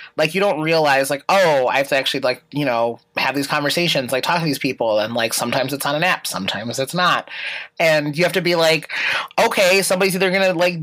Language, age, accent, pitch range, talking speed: English, 30-49, American, 135-190 Hz, 240 wpm